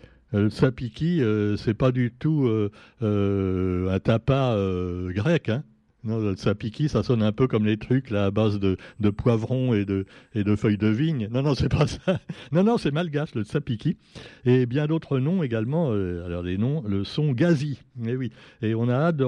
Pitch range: 105-140 Hz